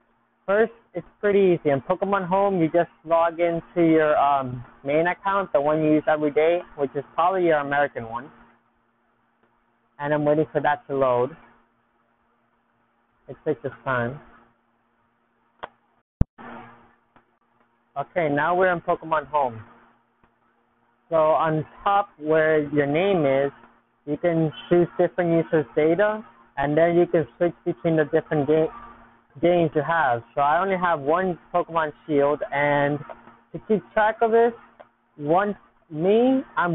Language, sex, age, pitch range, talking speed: English, male, 20-39, 120-175 Hz, 140 wpm